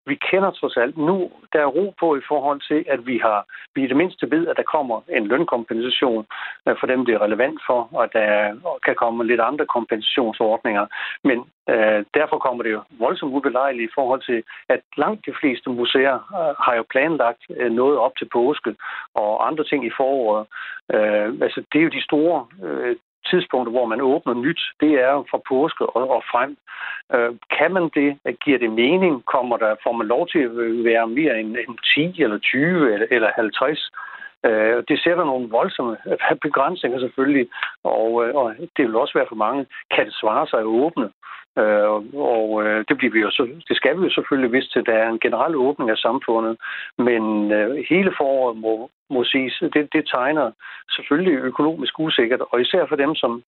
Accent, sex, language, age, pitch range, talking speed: native, male, Danish, 60-79, 110-150 Hz, 185 wpm